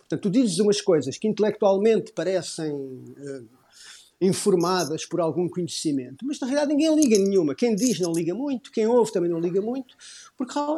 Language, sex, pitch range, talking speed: Portuguese, male, 160-220 Hz, 175 wpm